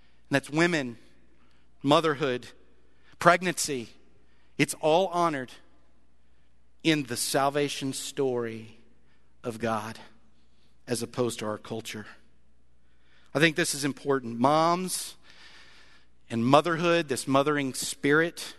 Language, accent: English, American